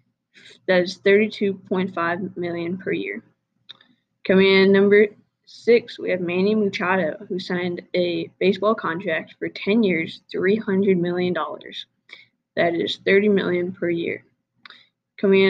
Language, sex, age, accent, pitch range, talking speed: English, female, 10-29, American, 175-205 Hz, 125 wpm